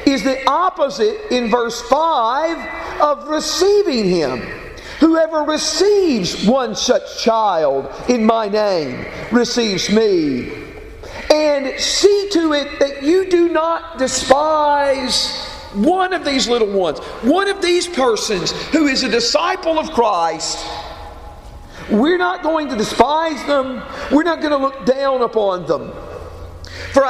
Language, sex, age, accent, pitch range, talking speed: English, male, 50-69, American, 250-330 Hz, 130 wpm